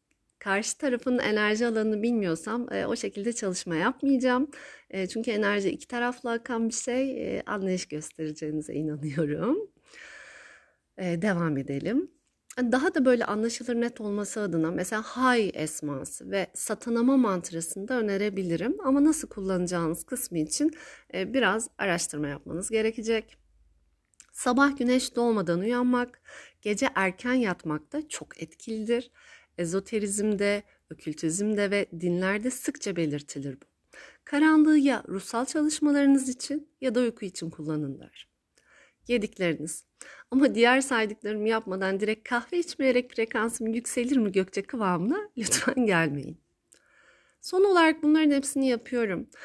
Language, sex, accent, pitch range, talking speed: Turkish, female, native, 185-260 Hz, 120 wpm